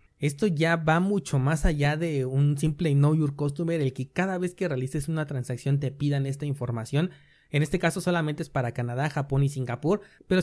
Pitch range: 135-165 Hz